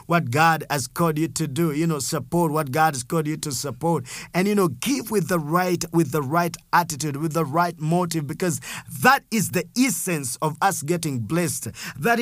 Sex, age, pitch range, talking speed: male, 50-69, 140-175 Hz, 205 wpm